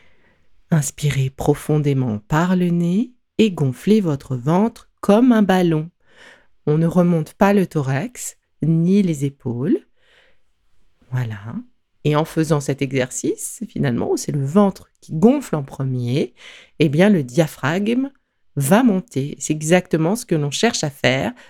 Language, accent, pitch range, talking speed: French, French, 135-200 Hz, 140 wpm